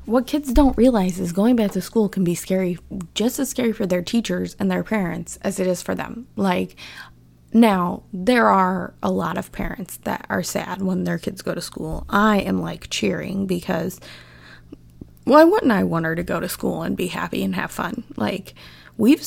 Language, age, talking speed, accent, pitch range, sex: English, 20-39, 200 wpm, American, 180-260 Hz, female